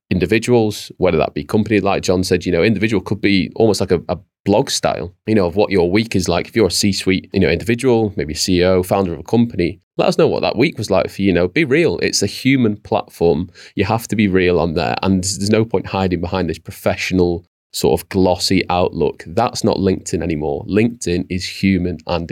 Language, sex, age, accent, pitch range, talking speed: English, male, 30-49, British, 95-115 Hz, 225 wpm